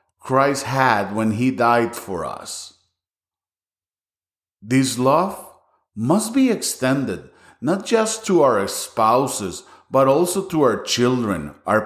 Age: 50-69